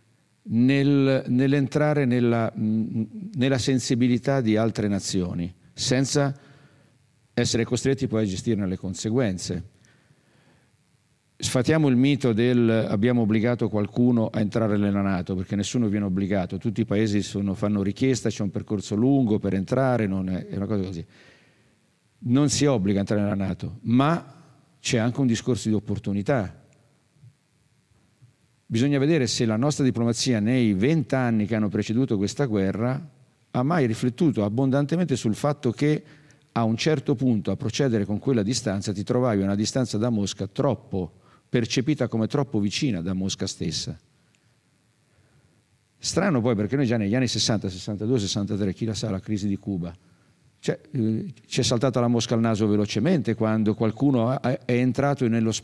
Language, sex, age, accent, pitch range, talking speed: Italian, male, 50-69, native, 105-135 Hz, 150 wpm